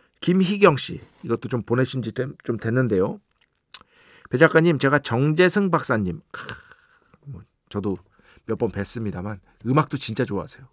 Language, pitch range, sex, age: Korean, 110-165 Hz, male, 40-59